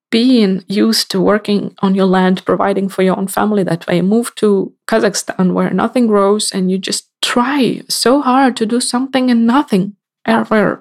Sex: female